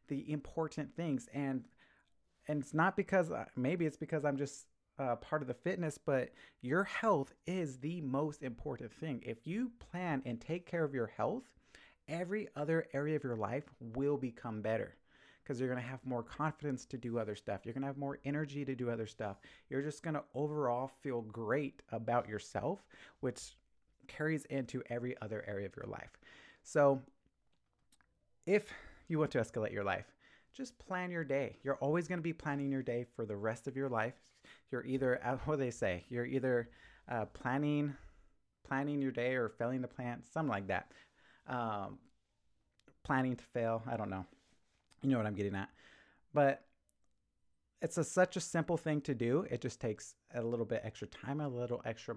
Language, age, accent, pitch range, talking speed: English, 30-49, American, 115-150 Hz, 185 wpm